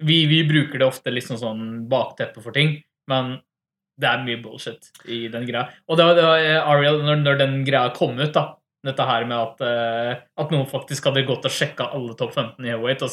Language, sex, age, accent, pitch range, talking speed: English, male, 20-39, Swedish, 120-145 Hz, 220 wpm